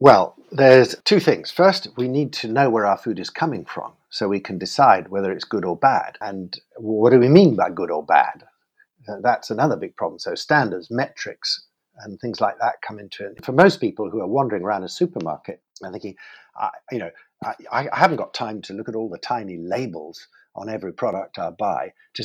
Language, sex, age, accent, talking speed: English, male, 50-69, British, 215 wpm